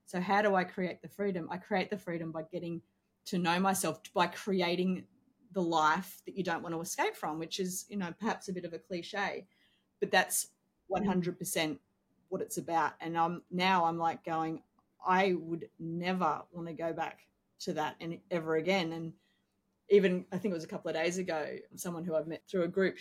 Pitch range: 165-205 Hz